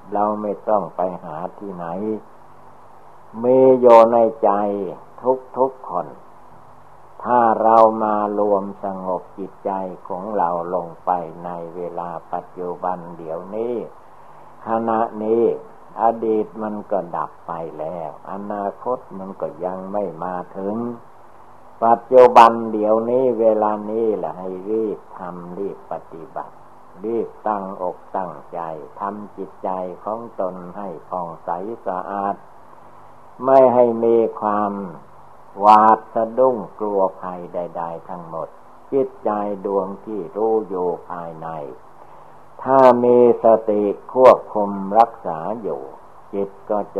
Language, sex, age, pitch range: Thai, male, 60-79, 90-115 Hz